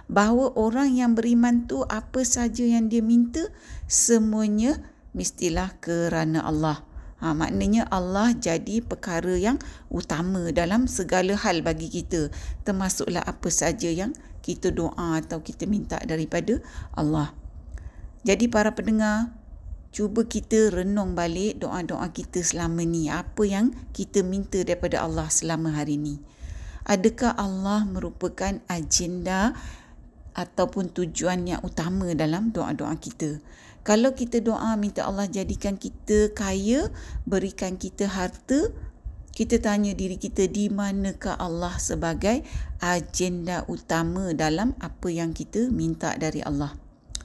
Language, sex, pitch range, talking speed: Malay, female, 170-220 Hz, 120 wpm